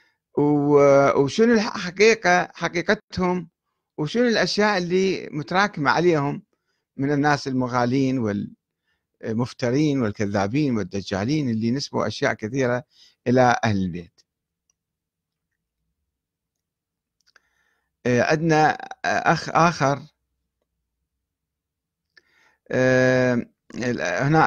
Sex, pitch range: male, 115-160 Hz